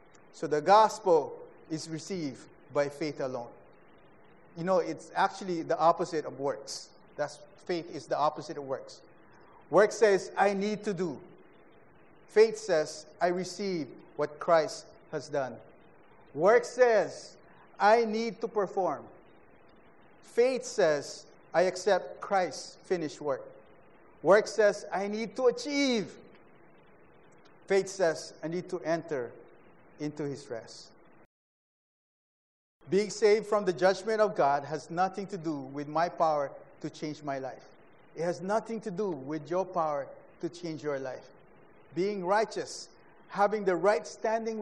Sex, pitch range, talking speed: male, 160-210 Hz, 135 wpm